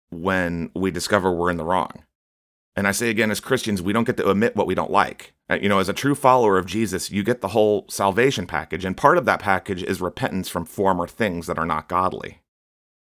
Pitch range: 85-115 Hz